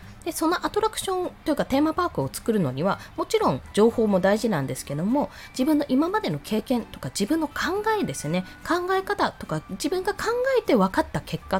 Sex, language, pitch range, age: female, Japanese, 195-320 Hz, 20-39